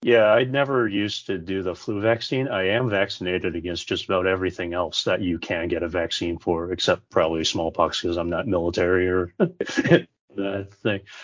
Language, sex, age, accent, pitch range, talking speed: English, male, 40-59, American, 95-115 Hz, 180 wpm